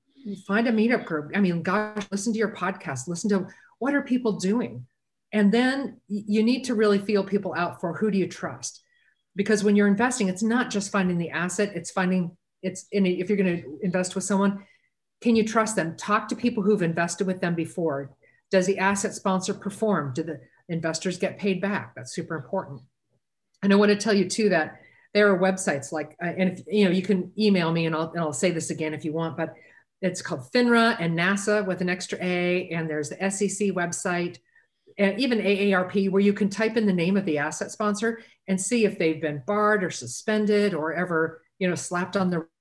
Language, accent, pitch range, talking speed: English, American, 170-210 Hz, 215 wpm